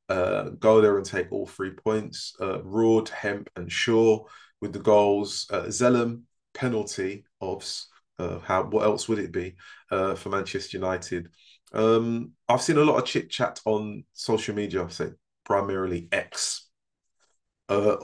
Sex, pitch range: male, 90-115 Hz